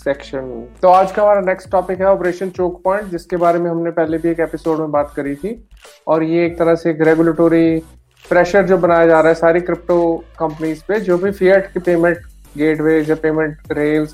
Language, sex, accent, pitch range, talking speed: English, male, Indian, 155-180 Hz, 205 wpm